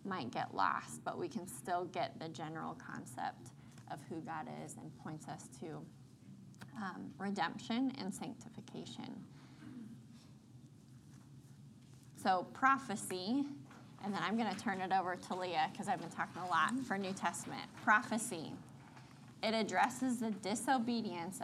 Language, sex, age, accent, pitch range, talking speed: English, female, 10-29, American, 160-215 Hz, 135 wpm